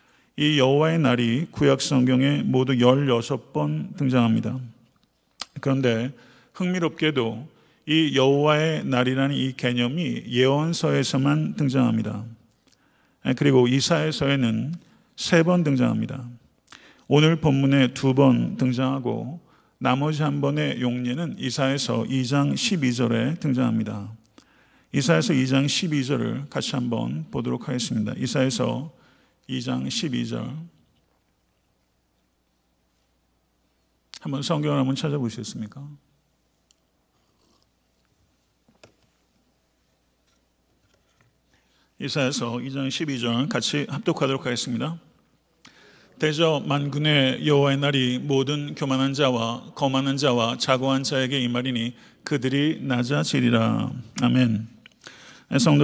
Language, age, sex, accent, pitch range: Korean, 40-59, male, native, 120-145 Hz